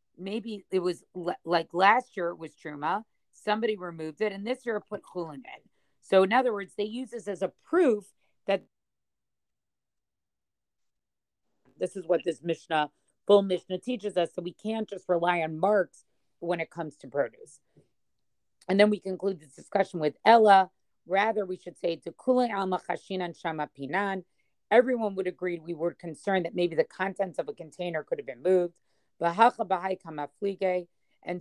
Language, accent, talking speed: English, American, 165 wpm